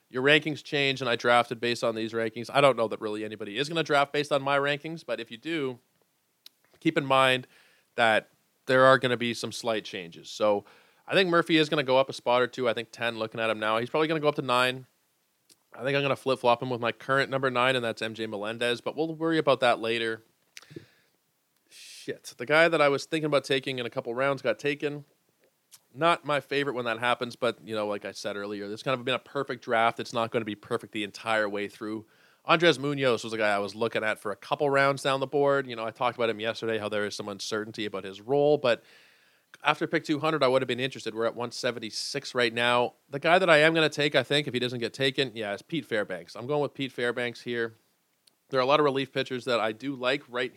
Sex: male